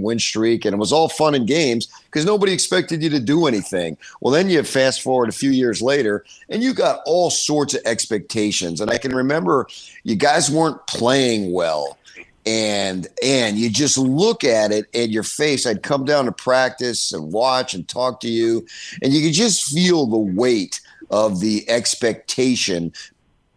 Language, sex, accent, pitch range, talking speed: English, male, American, 110-145 Hz, 185 wpm